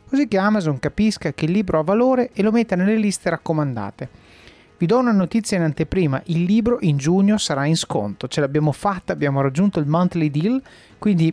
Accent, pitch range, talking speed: native, 150-210 Hz, 195 wpm